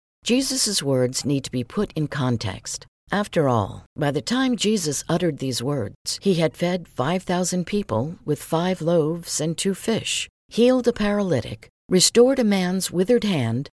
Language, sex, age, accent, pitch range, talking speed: English, female, 50-69, American, 130-200 Hz, 155 wpm